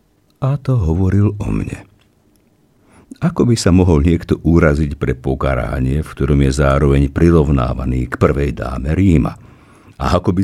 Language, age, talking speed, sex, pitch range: Slovak, 50-69, 145 wpm, male, 75-105 Hz